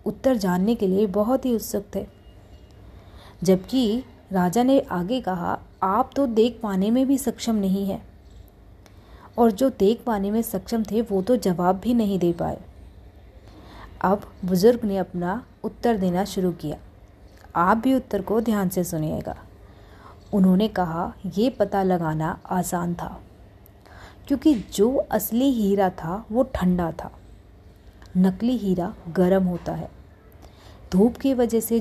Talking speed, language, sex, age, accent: 140 wpm, Hindi, female, 30-49, native